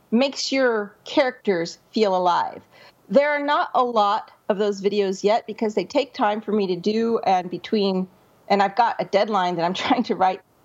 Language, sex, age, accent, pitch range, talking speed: English, female, 40-59, American, 200-255 Hz, 190 wpm